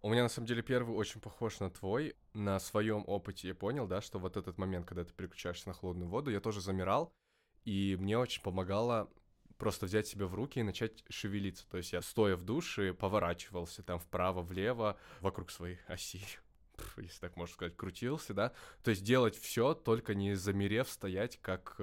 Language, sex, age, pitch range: Russian, male, 20-39, 90-105 Hz